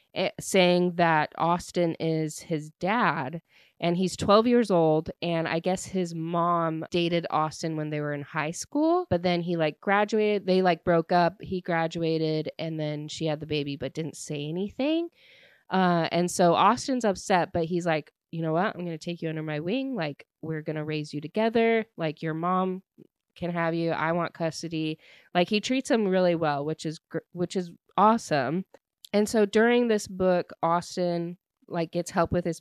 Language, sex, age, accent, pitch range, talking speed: English, female, 20-39, American, 160-200 Hz, 185 wpm